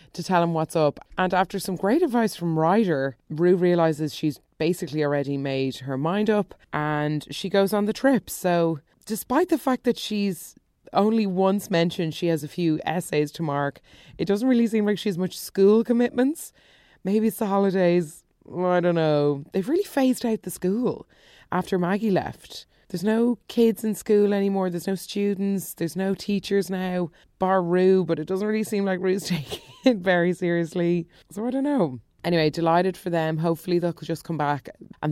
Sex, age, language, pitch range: female, 20-39, English, 160-205 Hz